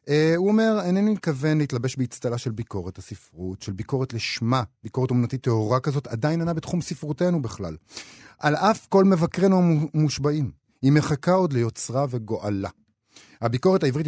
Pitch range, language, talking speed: 115-170 Hz, Hebrew, 145 wpm